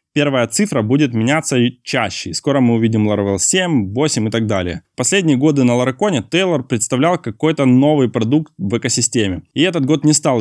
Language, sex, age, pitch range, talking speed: Russian, male, 20-39, 115-145 Hz, 180 wpm